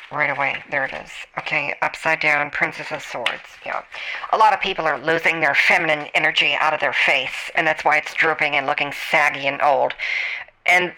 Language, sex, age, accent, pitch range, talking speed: English, female, 50-69, American, 155-200 Hz, 195 wpm